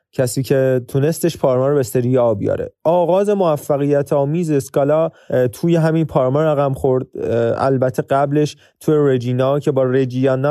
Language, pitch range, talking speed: Persian, 125-155 Hz, 130 wpm